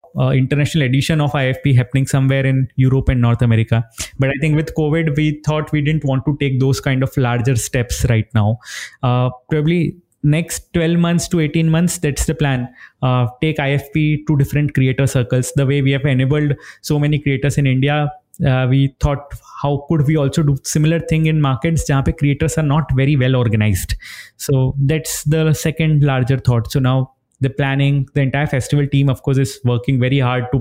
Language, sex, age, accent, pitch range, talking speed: English, male, 20-39, Indian, 130-150 Hz, 195 wpm